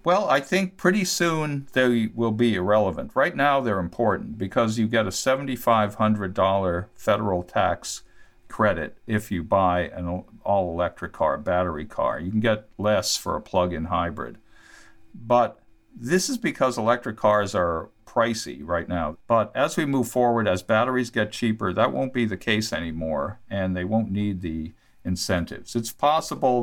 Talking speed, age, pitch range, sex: 160 wpm, 50-69, 90-115 Hz, male